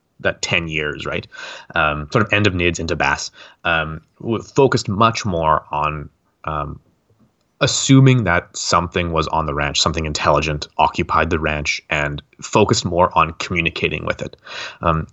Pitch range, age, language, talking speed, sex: 75-95 Hz, 30-49, English, 150 wpm, male